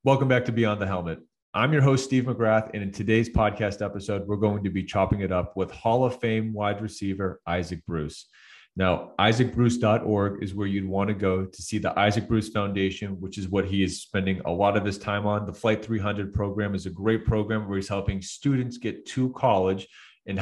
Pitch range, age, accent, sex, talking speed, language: 95-110 Hz, 30-49, American, male, 215 wpm, English